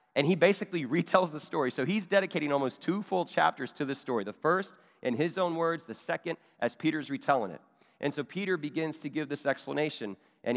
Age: 30-49